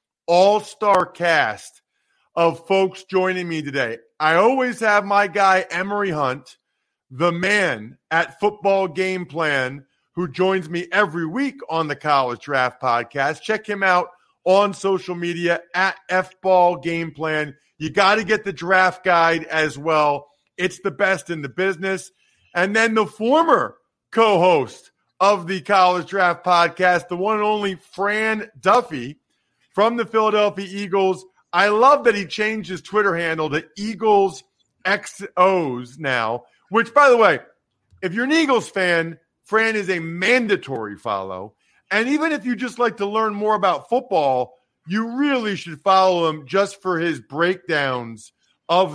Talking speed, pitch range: 145 wpm, 165-205 Hz